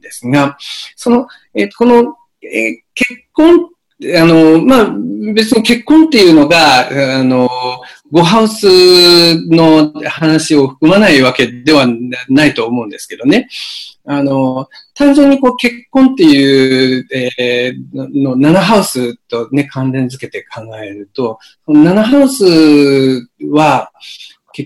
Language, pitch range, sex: Japanese, 130-220 Hz, male